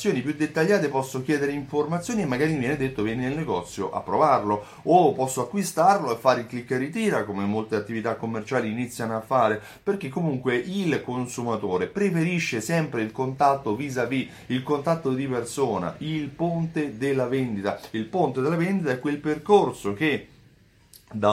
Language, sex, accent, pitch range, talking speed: Italian, male, native, 115-165 Hz, 160 wpm